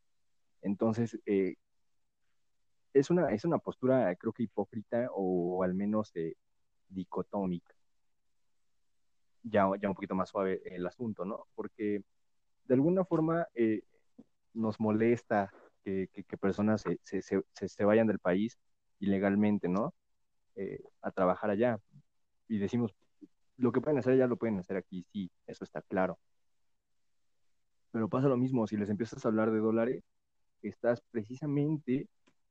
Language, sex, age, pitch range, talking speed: Spanish, male, 20-39, 100-125 Hz, 140 wpm